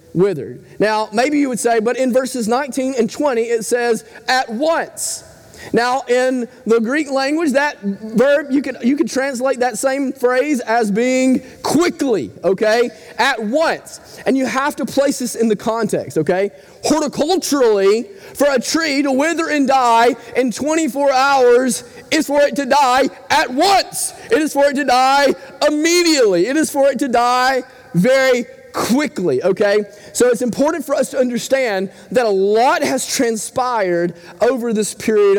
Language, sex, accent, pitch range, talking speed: English, male, American, 215-275 Hz, 160 wpm